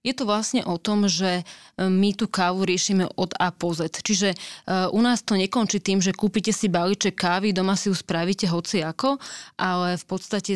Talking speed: 190 wpm